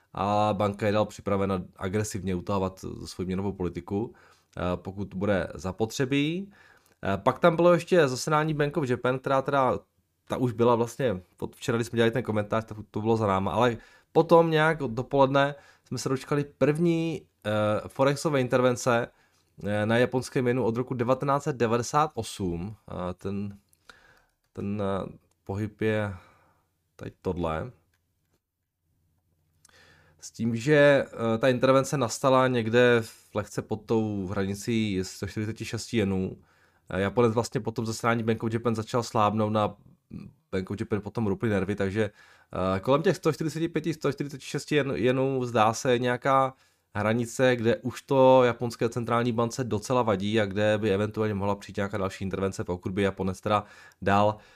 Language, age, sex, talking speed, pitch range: Czech, 20-39, male, 135 wpm, 95-130 Hz